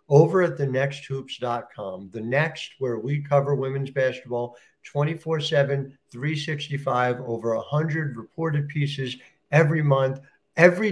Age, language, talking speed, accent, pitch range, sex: 60-79, English, 105 wpm, American, 130-170 Hz, male